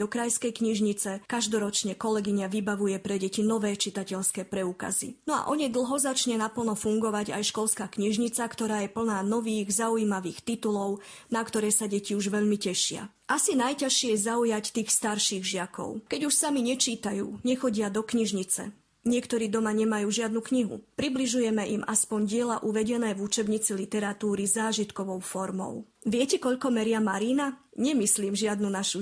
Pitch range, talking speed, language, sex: 205-240 Hz, 145 wpm, Slovak, female